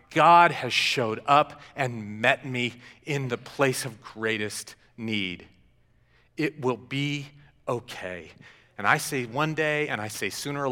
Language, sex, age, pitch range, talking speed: English, male, 40-59, 105-125 Hz, 150 wpm